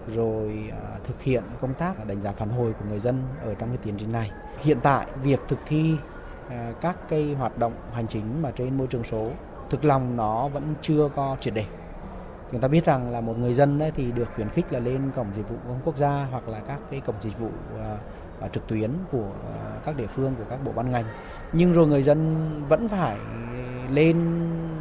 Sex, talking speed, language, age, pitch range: male, 215 wpm, Vietnamese, 20-39, 110-145 Hz